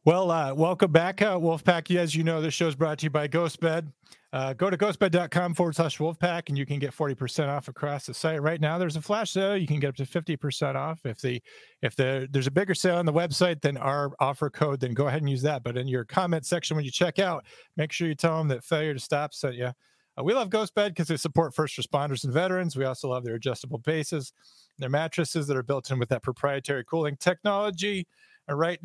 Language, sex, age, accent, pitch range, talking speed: English, male, 40-59, American, 135-170 Hz, 245 wpm